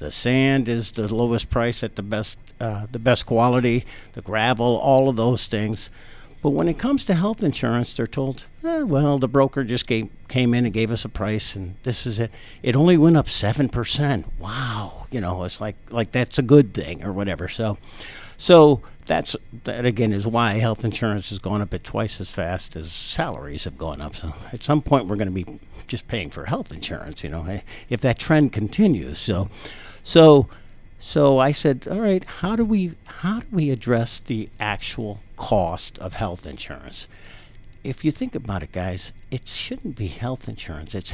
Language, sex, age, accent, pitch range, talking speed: English, male, 60-79, American, 100-130 Hz, 195 wpm